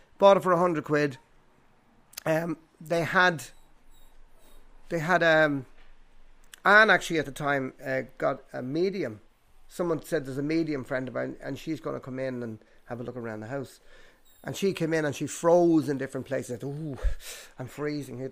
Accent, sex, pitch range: Irish, male, 135-170 Hz